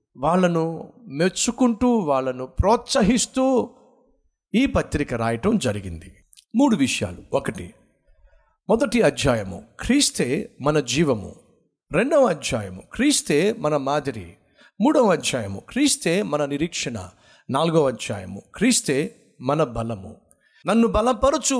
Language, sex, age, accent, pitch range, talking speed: Telugu, male, 50-69, native, 130-220 Hz, 90 wpm